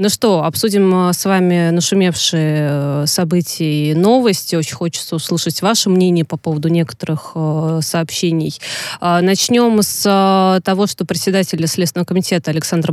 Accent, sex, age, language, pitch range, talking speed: native, female, 20-39, Russian, 165-190 Hz, 120 wpm